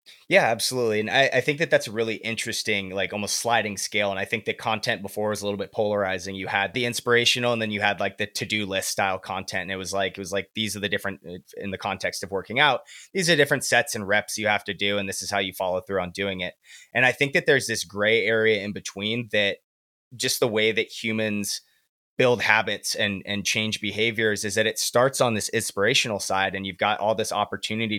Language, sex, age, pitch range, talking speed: English, male, 20-39, 100-120 Hz, 240 wpm